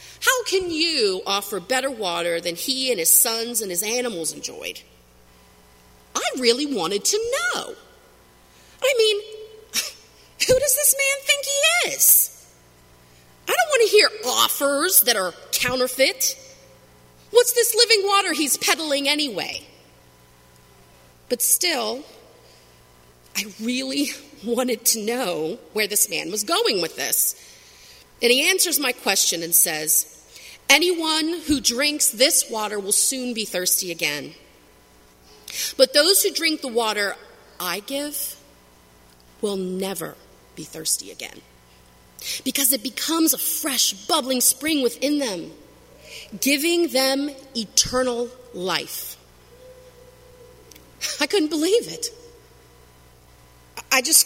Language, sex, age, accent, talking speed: English, female, 30-49, American, 120 wpm